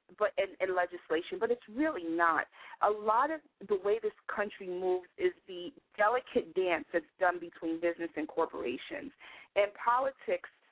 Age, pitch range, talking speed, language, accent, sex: 40-59, 175-240 Hz, 150 wpm, English, American, female